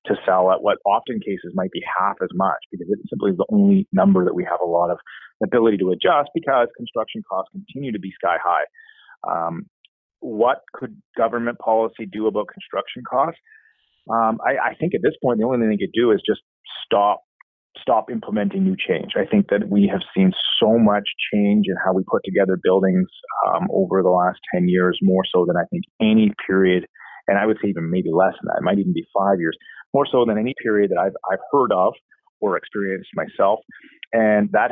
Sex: male